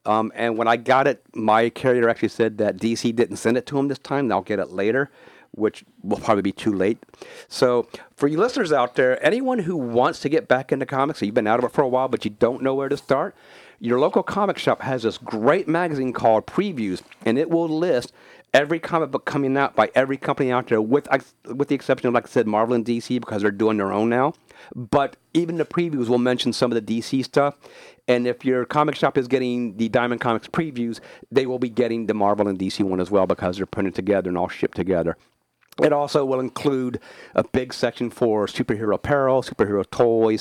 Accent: American